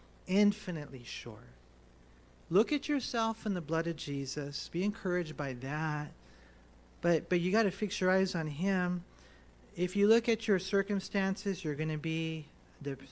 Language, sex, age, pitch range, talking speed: English, male, 40-59, 140-190 Hz, 160 wpm